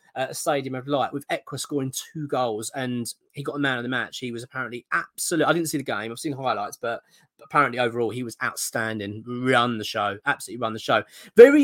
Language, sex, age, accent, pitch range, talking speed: English, male, 20-39, British, 120-155 Hz, 220 wpm